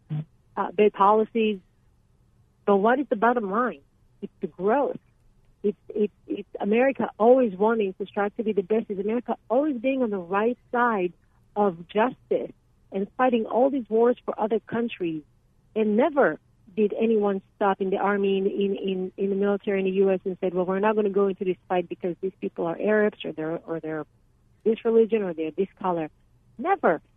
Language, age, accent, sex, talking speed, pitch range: English, 40-59, American, female, 185 wpm, 180-225 Hz